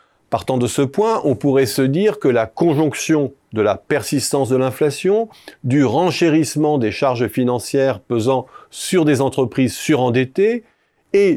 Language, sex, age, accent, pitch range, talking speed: French, male, 40-59, French, 120-155 Hz, 145 wpm